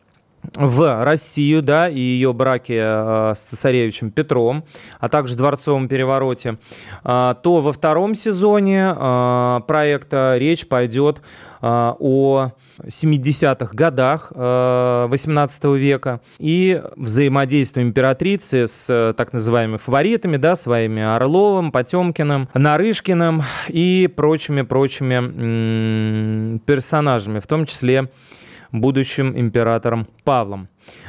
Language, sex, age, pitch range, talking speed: Russian, male, 20-39, 120-155 Hz, 90 wpm